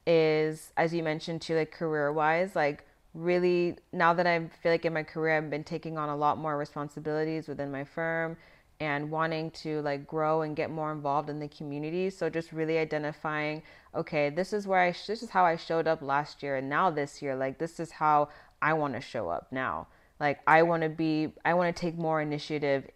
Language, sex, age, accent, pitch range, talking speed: English, female, 20-39, American, 145-170 Hz, 220 wpm